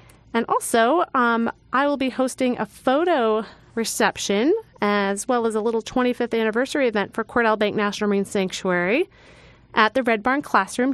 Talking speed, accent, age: 160 wpm, American, 30-49